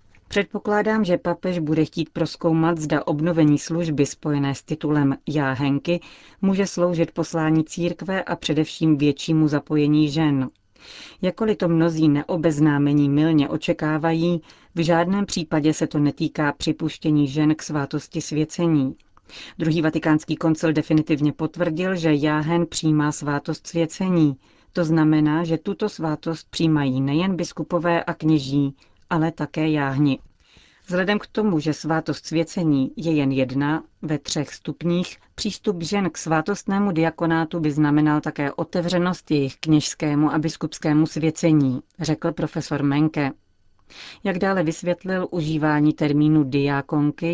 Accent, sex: native, female